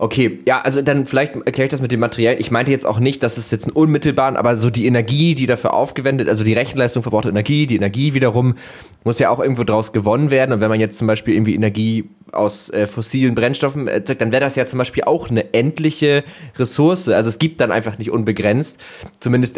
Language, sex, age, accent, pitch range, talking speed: German, male, 20-39, German, 110-130 Hz, 235 wpm